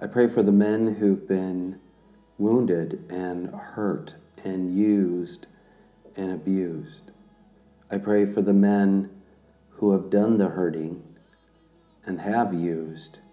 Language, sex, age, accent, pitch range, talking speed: English, male, 50-69, American, 95-105 Hz, 120 wpm